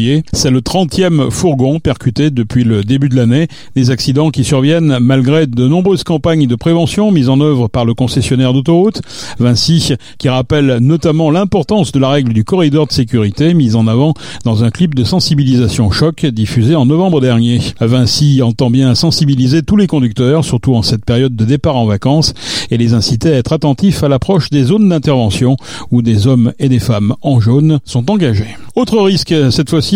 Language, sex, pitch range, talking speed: French, male, 125-165 Hz, 185 wpm